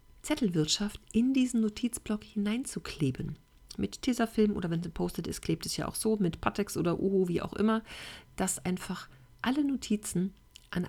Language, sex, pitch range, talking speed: German, female, 180-215 Hz, 160 wpm